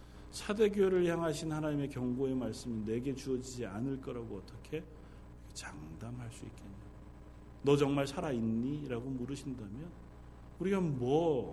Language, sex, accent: Korean, male, native